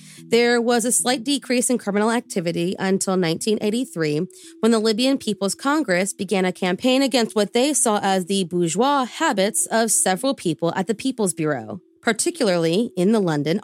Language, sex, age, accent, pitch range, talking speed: English, female, 30-49, American, 175-230 Hz, 165 wpm